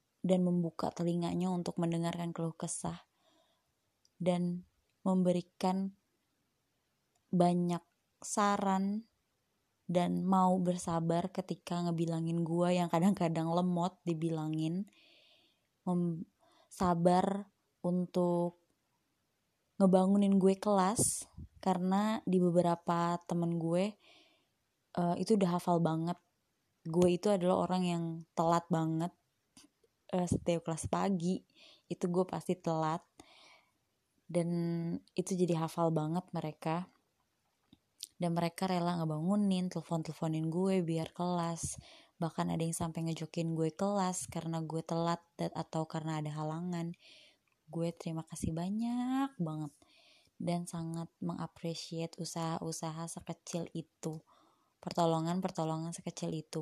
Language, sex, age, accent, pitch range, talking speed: Indonesian, female, 20-39, native, 165-185 Hz, 95 wpm